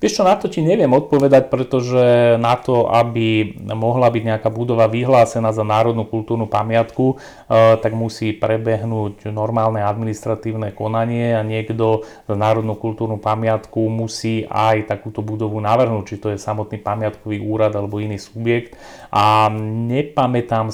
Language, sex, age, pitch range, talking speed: Slovak, male, 30-49, 105-115 Hz, 140 wpm